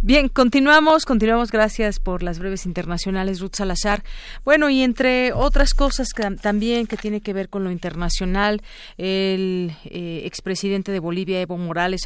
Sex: female